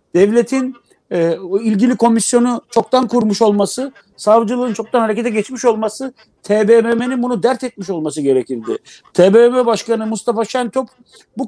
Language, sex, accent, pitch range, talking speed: Turkish, male, native, 210-250 Hz, 120 wpm